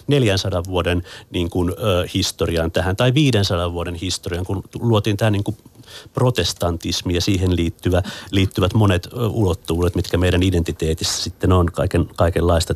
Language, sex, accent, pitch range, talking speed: Finnish, male, native, 90-130 Hz, 140 wpm